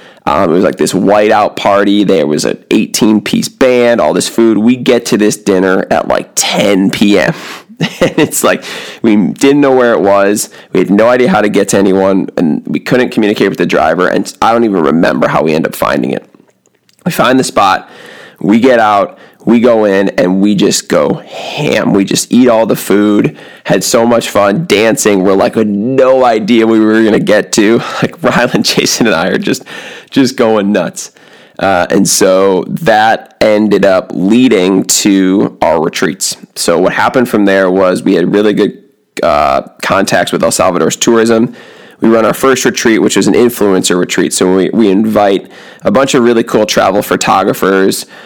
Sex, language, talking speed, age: male, English, 190 wpm, 20-39